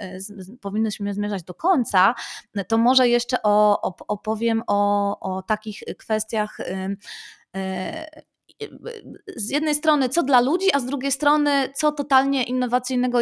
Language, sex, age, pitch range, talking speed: Polish, female, 20-39, 195-235 Hz, 115 wpm